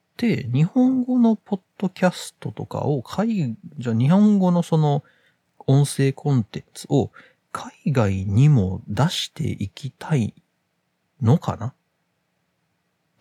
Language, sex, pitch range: Japanese, male, 110-175 Hz